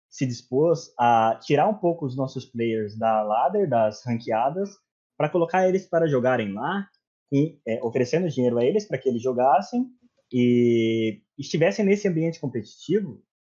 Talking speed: 150 wpm